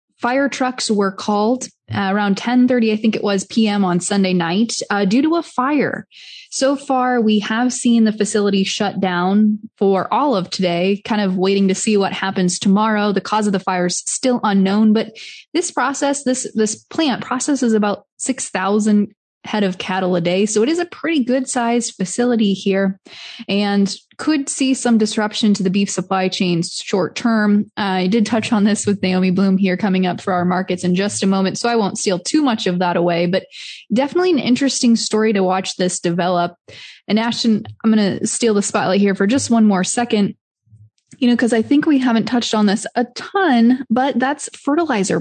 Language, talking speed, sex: English, 200 wpm, female